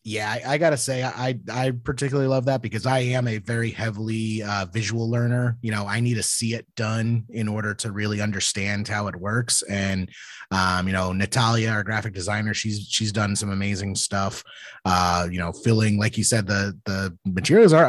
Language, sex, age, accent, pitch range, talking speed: English, male, 30-49, American, 105-130 Hz, 205 wpm